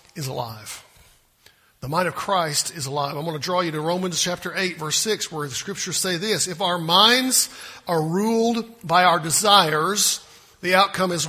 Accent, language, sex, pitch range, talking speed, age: American, English, male, 165-205 Hz, 185 wpm, 50-69